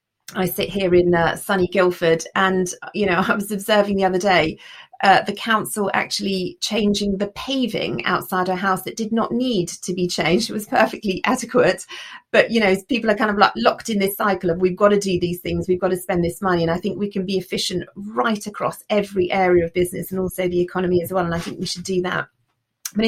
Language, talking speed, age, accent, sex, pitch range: English, 230 wpm, 40-59, British, female, 180-205 Hz